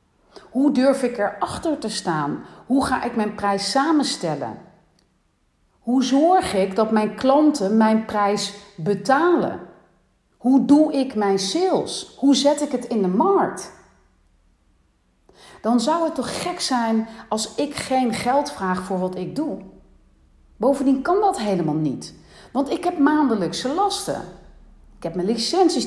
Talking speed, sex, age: 145 wpm, female, 40-59